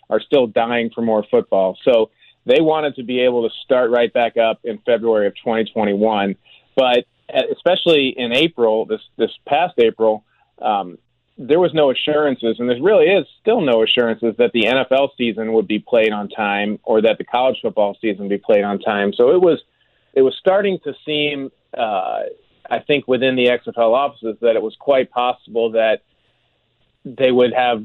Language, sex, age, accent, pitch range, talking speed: English, male, 40-59, American, 110-130 Hz, 185 wpm